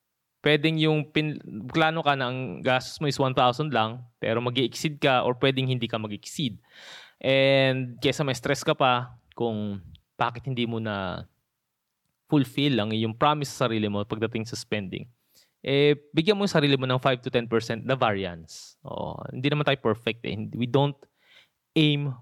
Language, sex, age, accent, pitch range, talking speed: Filipino, male, 20-39, native, 115-140 Hz, 165 wpm